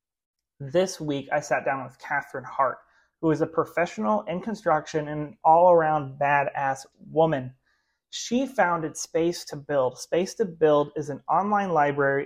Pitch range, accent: 140-180 Hz, American